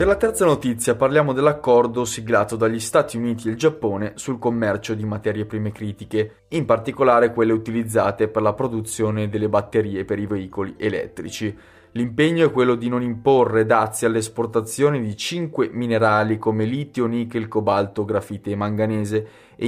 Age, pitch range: 20-39, 105-120 Hz